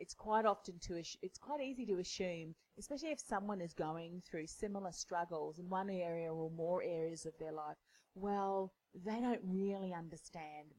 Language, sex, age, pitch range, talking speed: English, female, 30-49, 160-200 Hz, 170 wpm